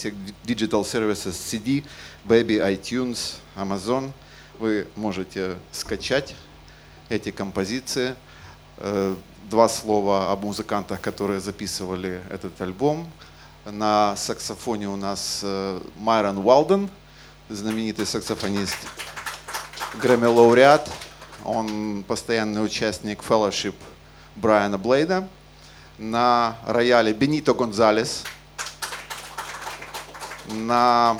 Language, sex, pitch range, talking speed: Russian, male, 100-125 Hz, 75 wpm